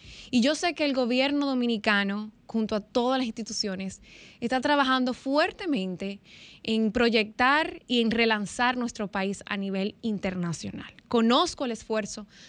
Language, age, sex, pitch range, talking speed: Spanish, 20-39, female, 210-265 Hz, 135 wpm